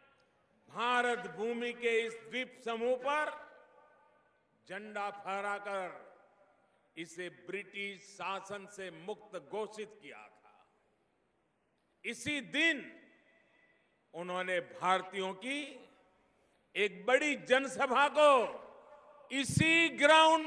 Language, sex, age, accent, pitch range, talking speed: Hindi, male, 50-69, native, 205-295 Hz, 80 wpm